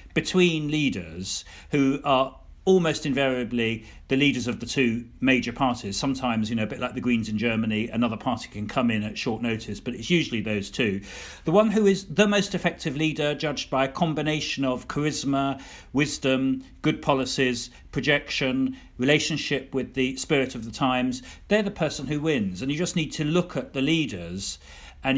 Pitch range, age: 120-155 Hz, 40-59